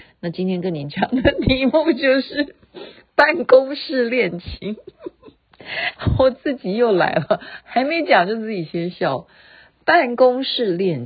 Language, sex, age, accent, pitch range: Chinese, female, 50-69, native, 170-265 Hz